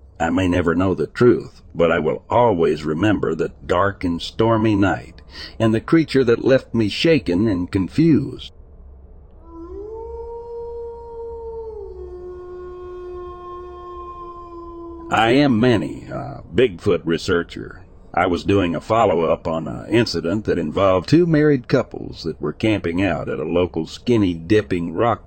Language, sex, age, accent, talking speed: English, male, 60-79, American, 130 wpm